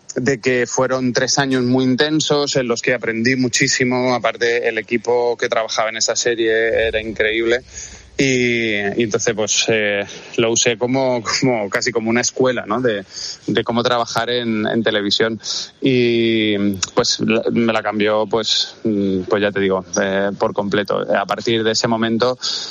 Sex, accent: male, Spanish